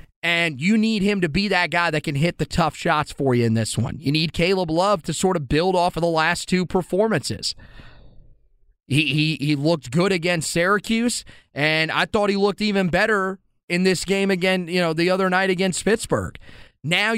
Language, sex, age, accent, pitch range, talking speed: English, male, 30-49, American, 160-195 Hz, 205 wpm